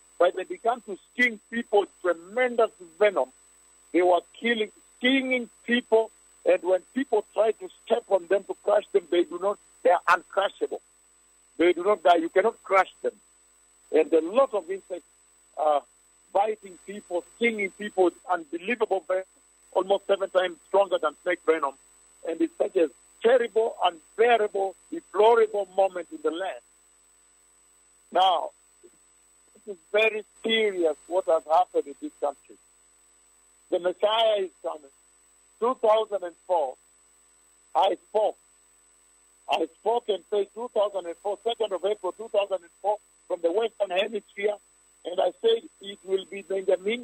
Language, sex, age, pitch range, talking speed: English, male, 50-69, 130-215 Hz, 135 wpm